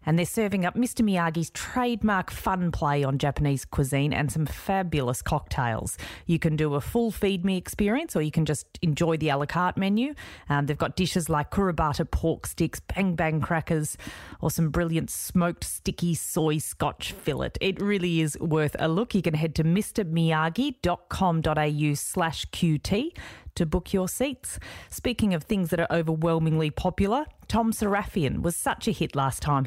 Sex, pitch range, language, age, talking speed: female, 155-195 Hz, English, 30-49, 170 wpm